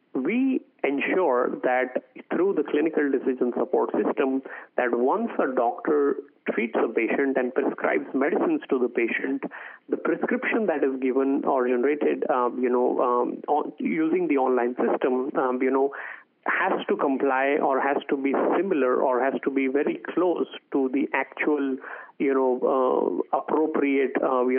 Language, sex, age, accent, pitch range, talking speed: English, male, 30-49, Indian, 130-190 Hz, 155 wpm